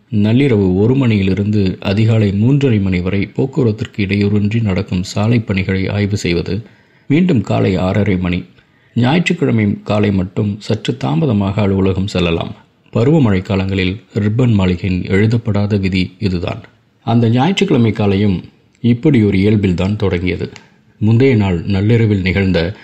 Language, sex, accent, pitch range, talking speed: Tamil, male, native, 95-115 Hz, 115 wpm